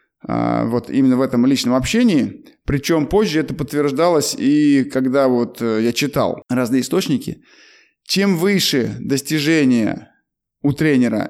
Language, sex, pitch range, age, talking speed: Russian, male, 130-170 Hz, 20-39, 115 wpm